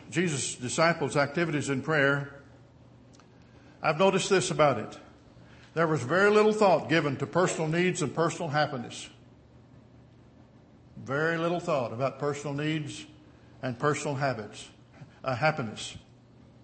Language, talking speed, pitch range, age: English, 120 wpm, 130-165 Hz, 60-79